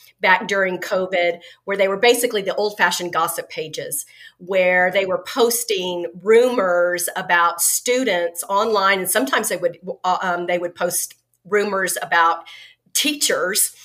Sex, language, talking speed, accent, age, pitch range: female, English, 130 wpm, American, 40-59, 180-255 Hz